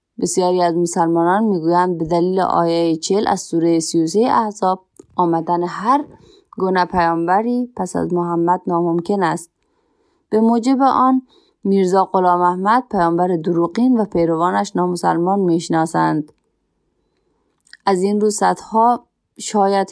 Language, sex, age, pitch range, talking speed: Persian, female, 20-39, 170-220 Hz, 115 wpm